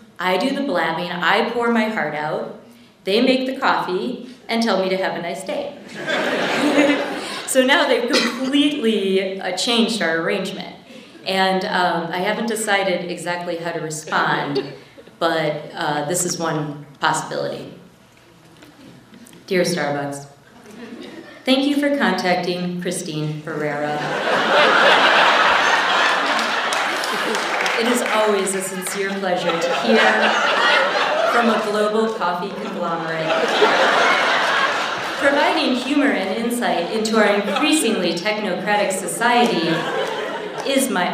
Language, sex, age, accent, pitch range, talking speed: English, female, 40-59, American, 175-235 Hz, 110 wpm